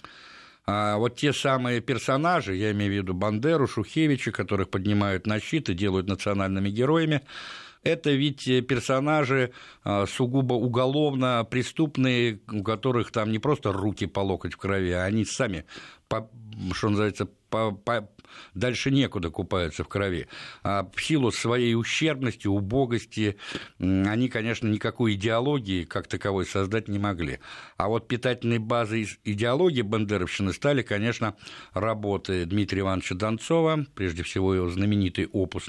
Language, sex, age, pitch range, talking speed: Russian, male, 50-69, 100-125 Hz, 125 wpm